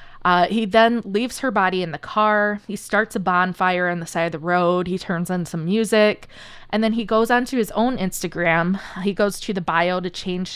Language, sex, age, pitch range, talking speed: English, female, 20-39, 175-210 Hz, 225 wpm